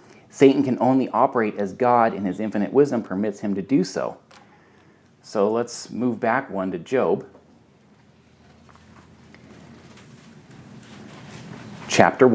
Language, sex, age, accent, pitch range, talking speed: English, male, 30-49, American, 95-135 Hz, 110 wpm